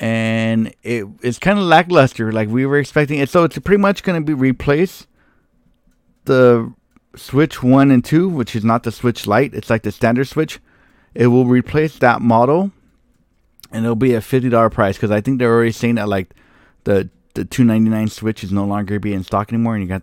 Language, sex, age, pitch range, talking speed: English, male, 20-39, 105-130 Hz, 215 wpm